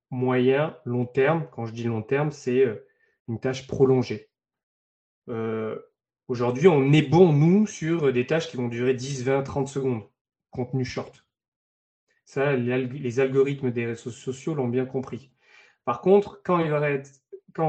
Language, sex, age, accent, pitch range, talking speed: French, male, 20-39, French, 120-145 Hz, 165 wpm